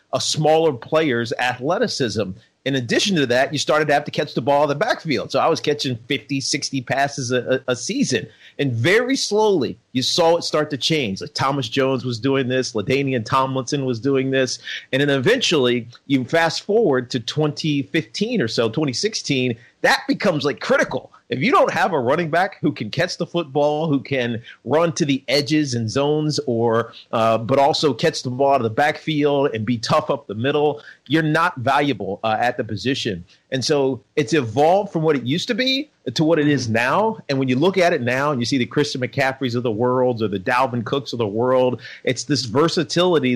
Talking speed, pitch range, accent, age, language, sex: 205 wpm, 125-155 Hz, American, 40-59, English, male